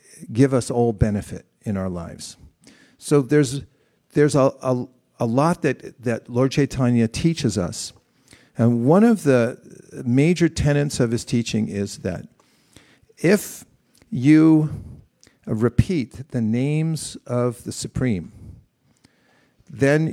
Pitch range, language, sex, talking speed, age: 115-145 Hz, English, male, 120 wpm, 50-69